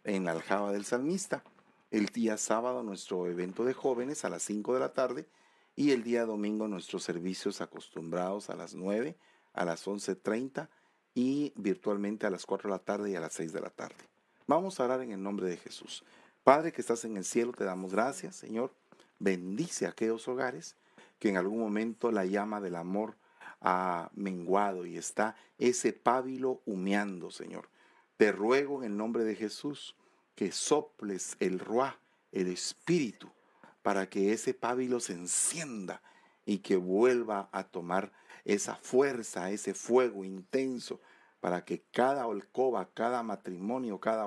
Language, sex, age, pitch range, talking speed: English, male, 40-59, 95-125 Hz, 165 wpm